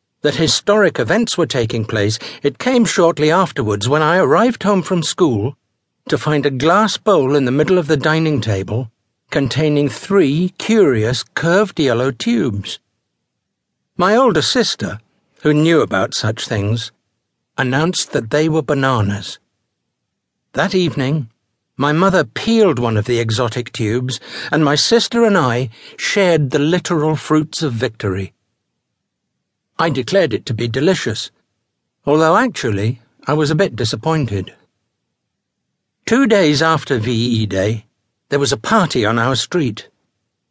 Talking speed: 140 wpm